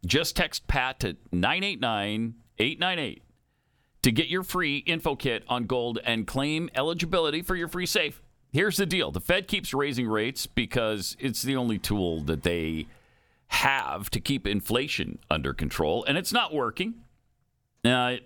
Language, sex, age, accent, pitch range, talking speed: English, male, 50-69, American, 105-150 Hz, 150 wpm